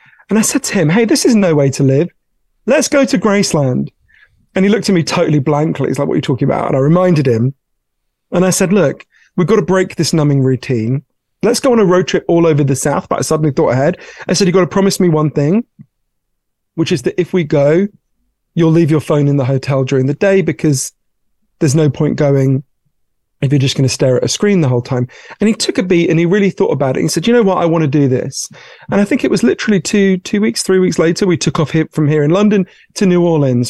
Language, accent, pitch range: English, British, 135-185 Hz